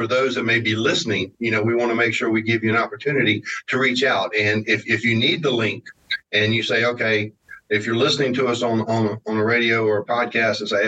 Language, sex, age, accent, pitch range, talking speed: English, male, 50-69, American, 115-155 Hz, 260 wpm